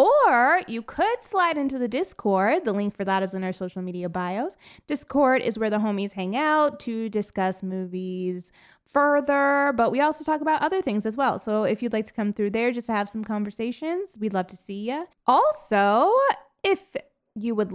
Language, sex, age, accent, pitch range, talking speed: English, female, 20-39, American, 195-280 Hz, 200 wpm